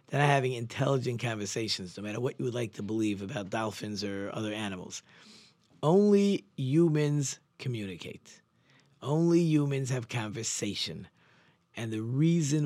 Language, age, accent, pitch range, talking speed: English, 50-69, American, 110-145 Hz, 135 wpm